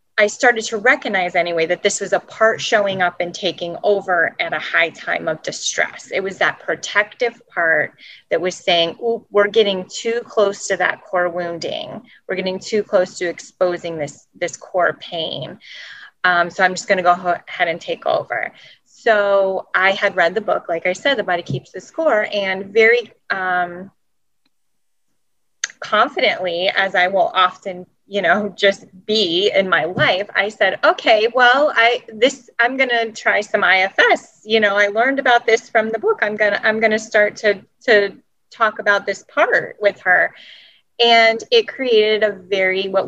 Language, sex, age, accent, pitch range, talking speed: English, female, 30-49, American, 180-225 Hz, 180 wpm